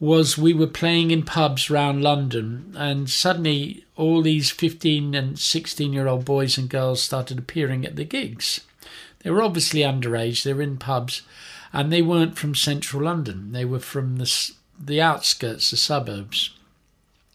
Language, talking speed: English, 165 wpm